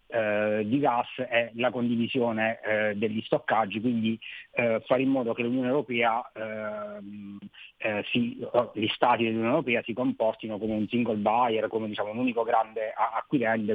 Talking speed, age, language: 130 wpm, 30-49, Italian